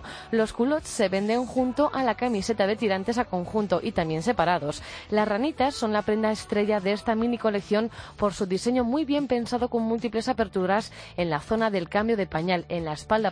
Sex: female